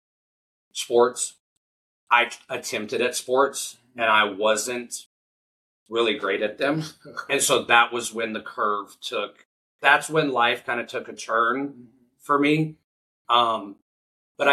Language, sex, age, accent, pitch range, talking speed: English, male, 40-59, American, 100-135 Hz, 130 wpm